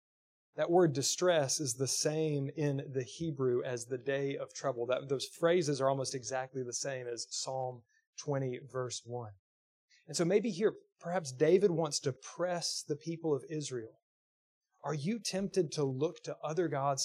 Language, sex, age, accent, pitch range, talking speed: English, male, 30-49, American, 130-170 Hz, 165 wpm